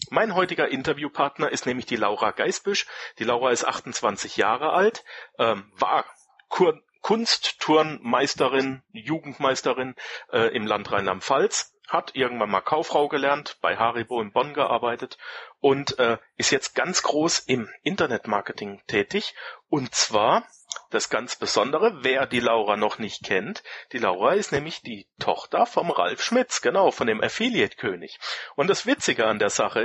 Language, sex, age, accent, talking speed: German, male, 40-59, German, 145 wpm